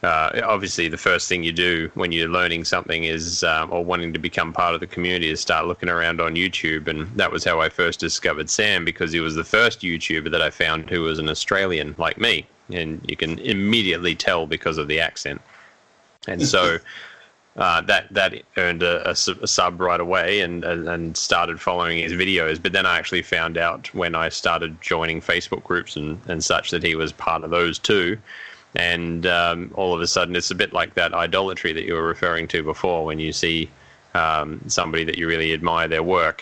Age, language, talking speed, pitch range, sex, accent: 20-39, English, 210 wpm, 80-85 Hz, male, Australian